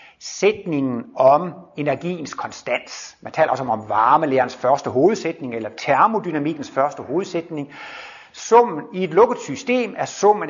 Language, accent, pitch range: Danish, native, 135-190 Hz